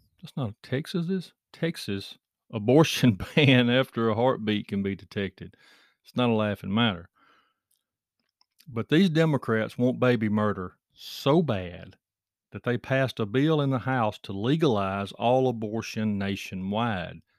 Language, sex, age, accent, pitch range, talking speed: English, male, 40-59, American, 100-140 Hz, 135 wpm